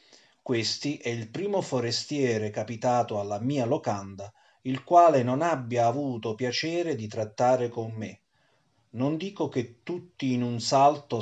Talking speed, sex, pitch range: 140 wpm, male, 115-135 Hz